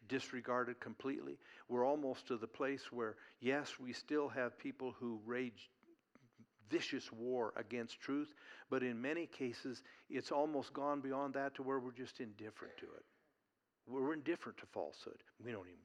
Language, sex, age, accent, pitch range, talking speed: English, male, 60-79, American, 120-140 Hz, 160 wpm